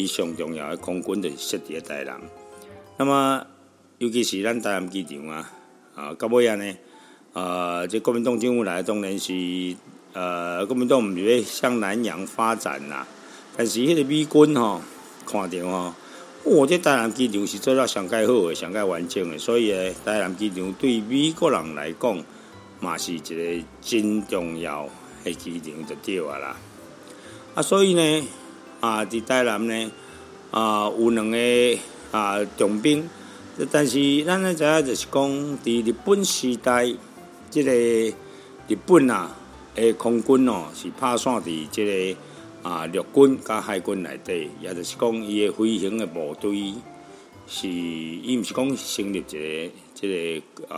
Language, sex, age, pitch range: Chinese, male, 50-69, 90-125 Hz